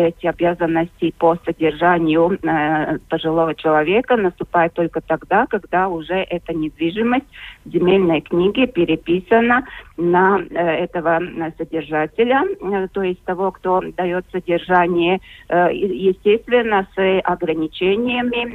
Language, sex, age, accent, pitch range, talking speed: Russian, female, 30-49, native, 165-200 Hz, 110 wpm